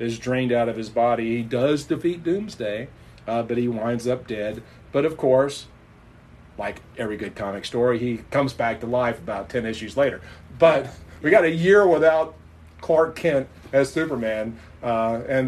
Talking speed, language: 175 wpm, English